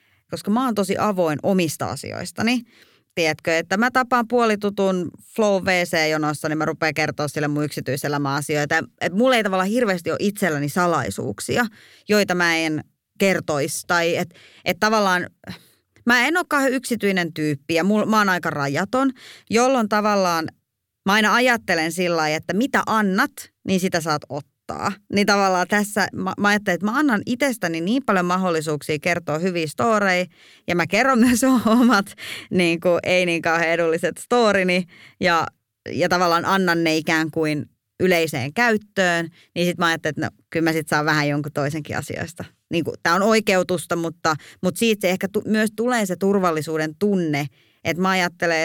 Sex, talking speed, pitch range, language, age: female, 165 wpm, 155-205 Hz, Finnish, 30-49